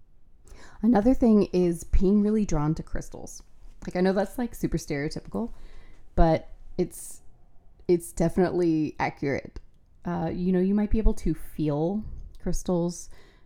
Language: English